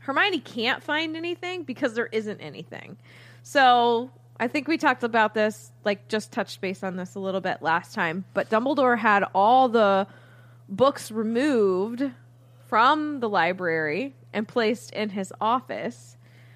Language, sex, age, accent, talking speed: English, female, 20-39, American, 150 wpm